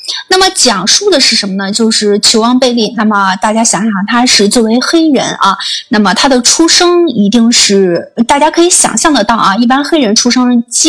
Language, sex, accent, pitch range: Chinese, female, native, 210-285 Hz